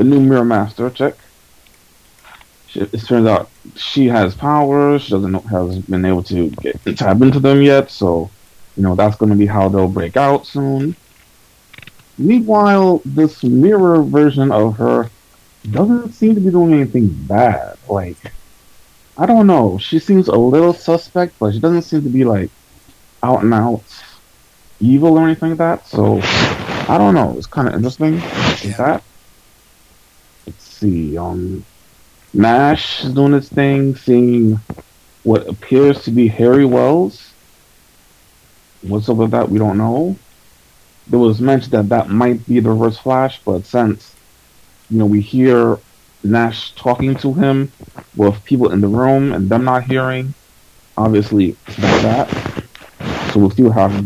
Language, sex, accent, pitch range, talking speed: English, male, American, 100-135 Hz, 155 wpm